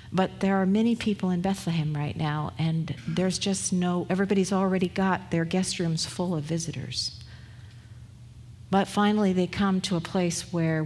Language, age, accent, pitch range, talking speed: Italian, 50-69, American, 155-190 Hz, 165 wpm